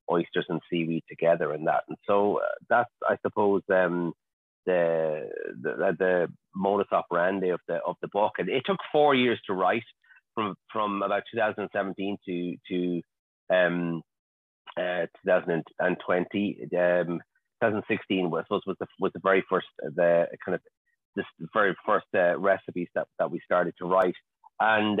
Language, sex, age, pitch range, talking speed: English, male, 30-49, 90-100 Hz, 150 wpm